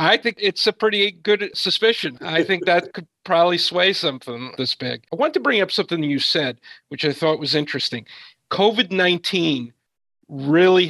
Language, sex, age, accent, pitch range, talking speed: English, male, 40-59, American, 150-190 Hz, 175 wpm